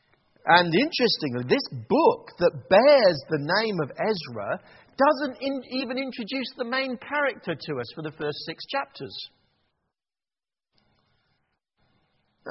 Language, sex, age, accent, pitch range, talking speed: English, male, 50-69, British, 130-205 Hz, 120 wpm